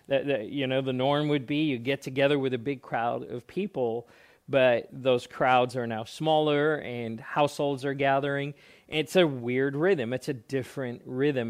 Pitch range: 125-150 Hz